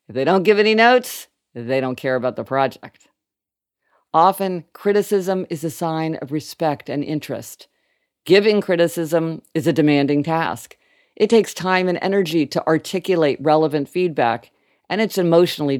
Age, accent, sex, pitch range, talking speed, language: 50-69, American, female, 135-190 Hz, 145 wpm, English